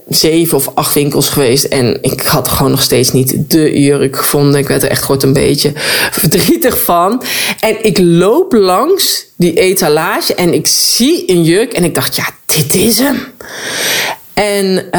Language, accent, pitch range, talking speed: Dutch, Dutch, 160-220 Hz, 170 wpm